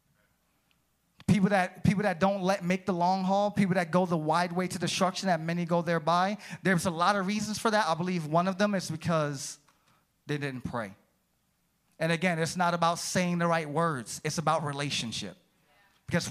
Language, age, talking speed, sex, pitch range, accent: English, 30-49, 190 wpm, male, 145-175 Hz, American